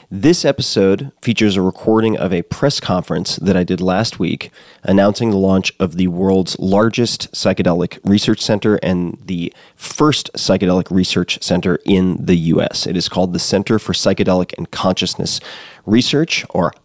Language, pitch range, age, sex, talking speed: English, 90-110 Hz, 30-49, male, 155 wpm